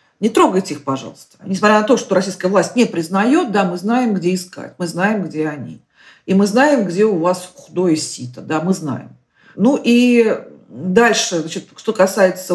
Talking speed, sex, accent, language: 180 wpm, female, native, Russian